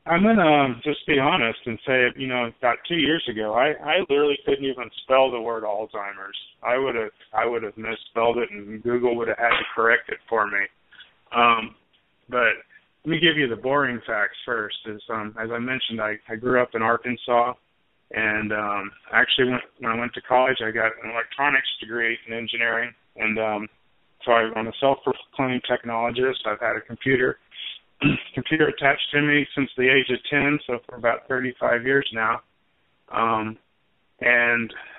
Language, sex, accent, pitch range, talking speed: English, male, American, 110-130 Hz, 180 wpm